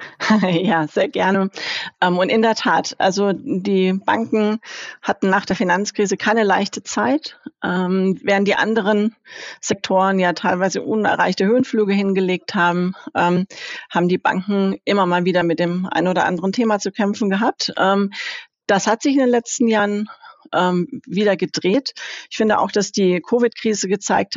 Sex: female